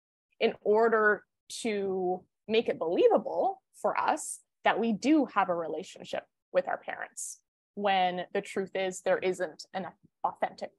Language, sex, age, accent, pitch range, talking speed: English, female, 20-39, American, 185-235 Hz, 140 wpm